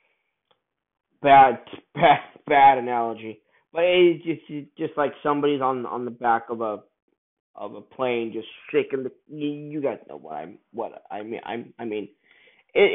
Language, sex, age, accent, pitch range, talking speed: English, male, 20-39, American, 130-160 Hz, 160 wpm